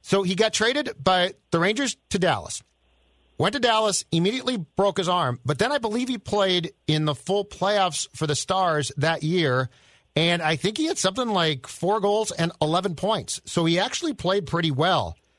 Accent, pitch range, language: American, 135-180 Hz, English